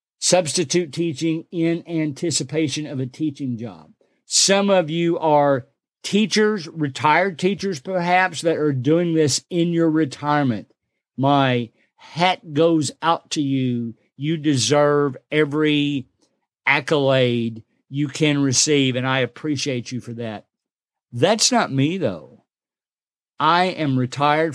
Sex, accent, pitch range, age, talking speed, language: male, American, 135-170 Hz, 50-69, 120 wpm, English